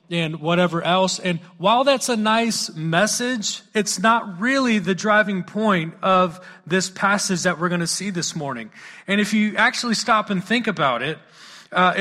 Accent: American